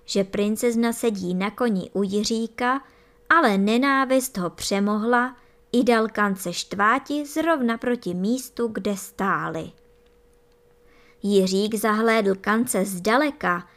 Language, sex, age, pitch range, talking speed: Czech, male, 20-39, 195-265 Hz, 105 wpm